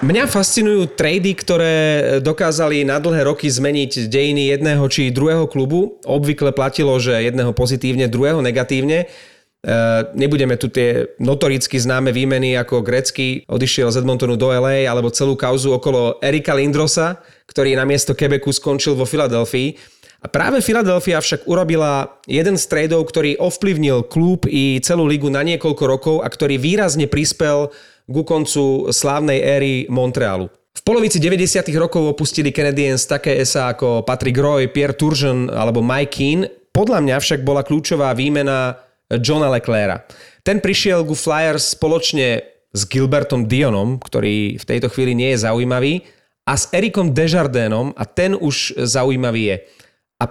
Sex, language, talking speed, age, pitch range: male, Slovak, 145 wpm, 30-49, 130-155 Hz